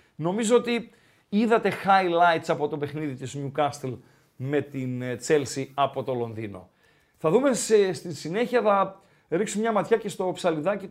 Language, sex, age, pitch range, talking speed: Greek, male, 50-69, 160-240 Hz, 145 wpm